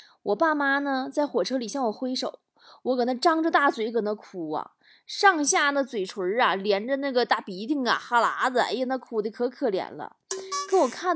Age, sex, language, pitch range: 20-39, female, Chinese, 225-320 Hz